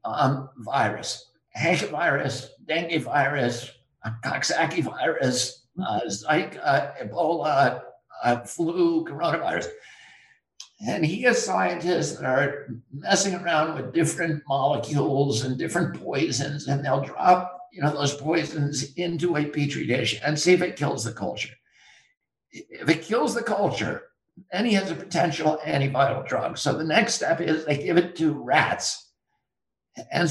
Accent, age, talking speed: American, 60-79, 140 wpm